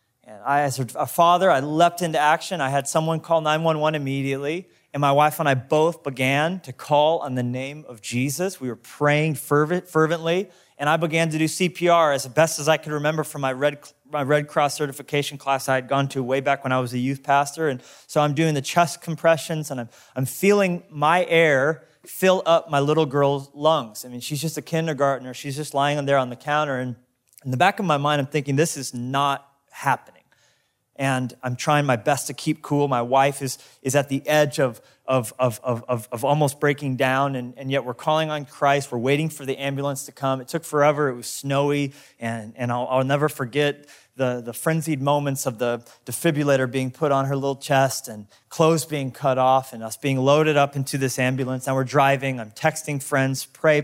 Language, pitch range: English, 130-155 Hz